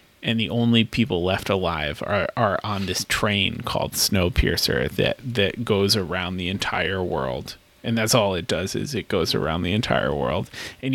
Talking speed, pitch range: 180 wpm, 90-115 Hz